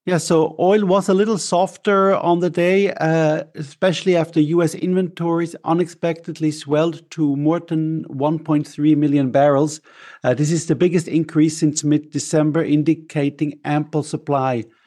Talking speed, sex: 135 wpm, male